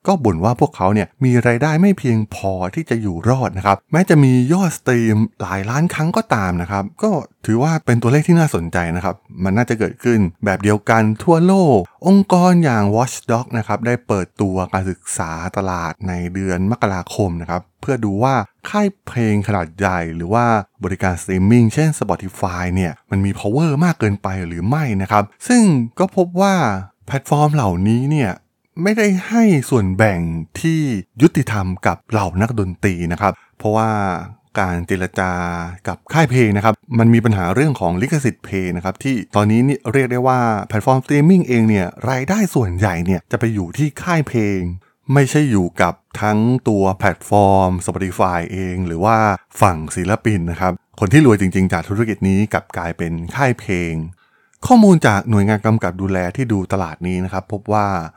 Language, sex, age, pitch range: Thai, male, 20-39, 95-130 Hz